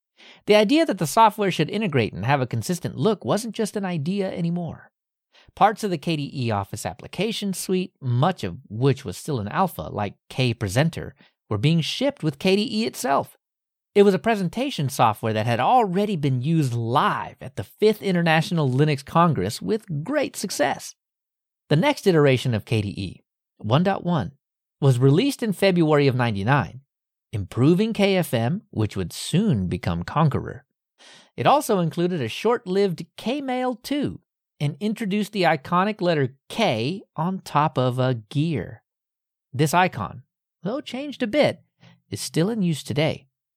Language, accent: English, American